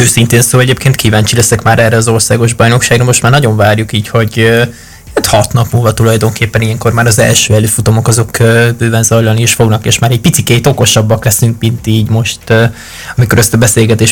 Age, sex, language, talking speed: 20-39, male, Hungarian, 175 wpm